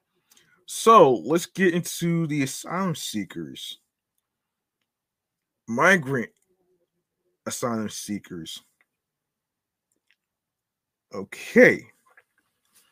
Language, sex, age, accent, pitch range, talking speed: English, male, 20-39, American, 110-160 Hz, 50 wpm